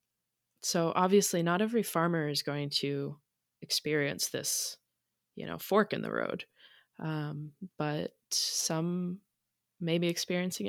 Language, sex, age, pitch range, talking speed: English, female, 20-39, 155-195 Hz, 125 wpm